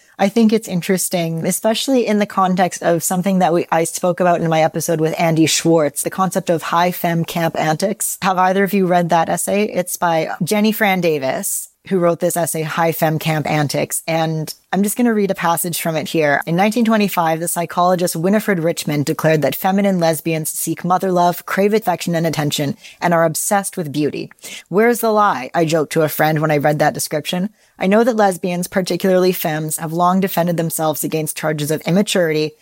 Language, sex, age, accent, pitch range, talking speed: English, female, 30-49, American, 160-195 Hz, 195 wpm